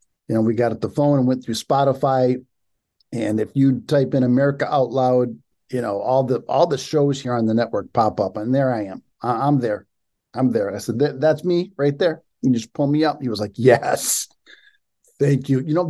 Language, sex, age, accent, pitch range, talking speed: English, male, 50-69, American, 115-140 Hz, 225 wpm